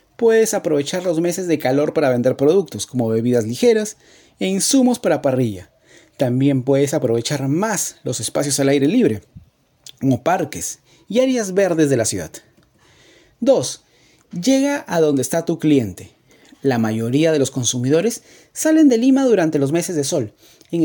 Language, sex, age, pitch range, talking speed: Spanish, male, 40-59, 130-195 Hz, 155 wpm